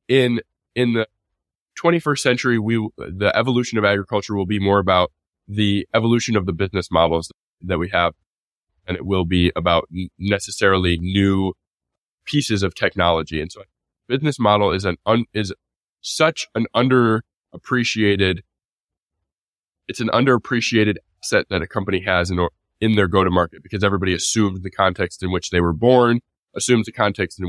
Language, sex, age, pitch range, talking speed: English, male, 20-39, 90-110 Hz, 155 wpm